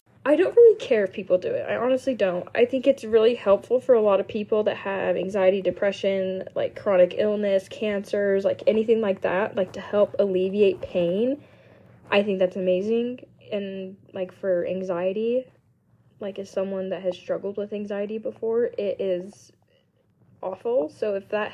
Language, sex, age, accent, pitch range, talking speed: English, female, 10-29, American, 195-265 Hz, 170 wpm